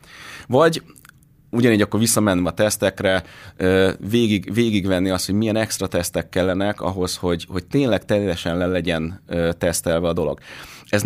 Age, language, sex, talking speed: 30-49, Hungarian, male, 135 wpm